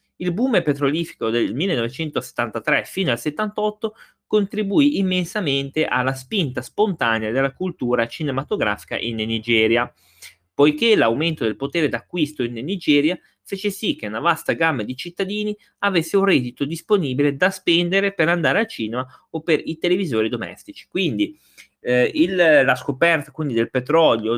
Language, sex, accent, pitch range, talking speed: Italian, male, native, 115-180 Hz, 140 wpm